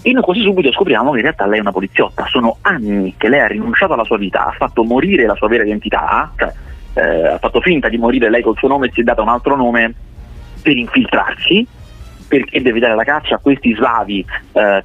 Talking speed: 230 wpm